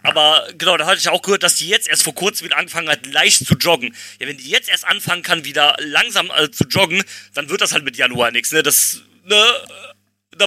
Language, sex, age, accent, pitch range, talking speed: German, male, 30-49, German, 155-205 Hz, 240 wpm